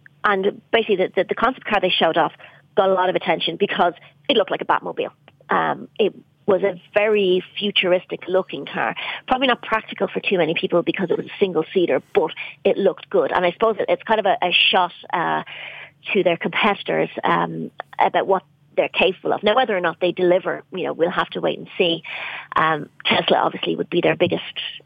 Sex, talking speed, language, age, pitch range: female, 205 wpm, English, 40-59, 165-200 Hz